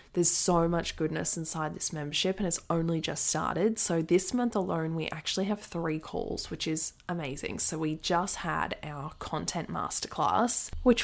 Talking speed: 175 wpm